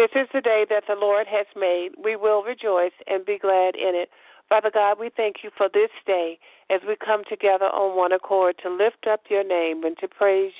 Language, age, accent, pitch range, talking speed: English, 50-69, American, 190-215 Hz, 225 wpm